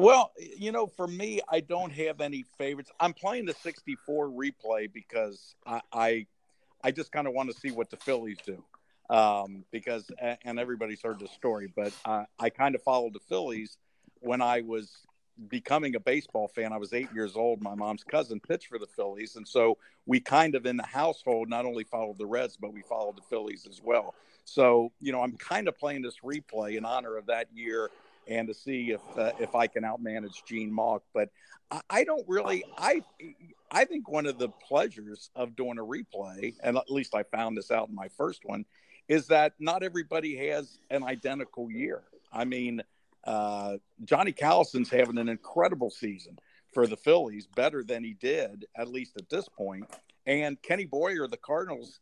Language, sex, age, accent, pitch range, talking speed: English, male, 50-69, American, 110-145 Hz, 195 wpm